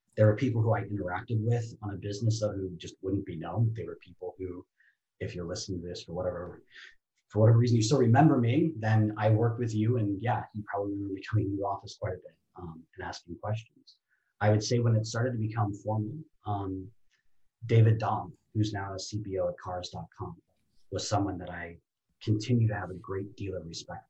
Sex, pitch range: male, 95-110 Hz